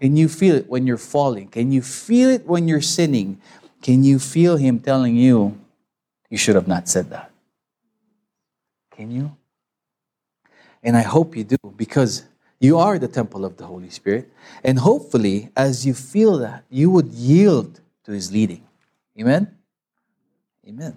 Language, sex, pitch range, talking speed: English, male, 130-210 Hz, 160 wpm